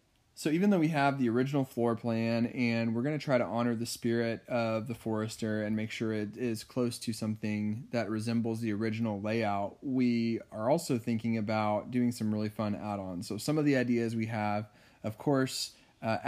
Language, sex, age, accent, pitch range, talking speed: English, male, 20-39, American, 110-130 Hz, 195 wpm